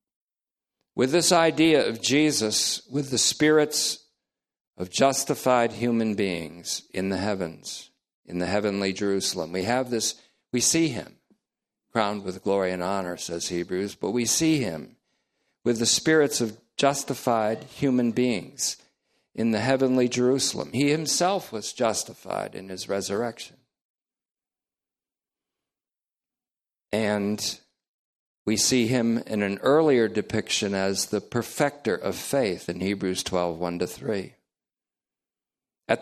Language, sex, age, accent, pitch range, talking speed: English, male, 50-69, American, 95-130 Hz, 120 wpm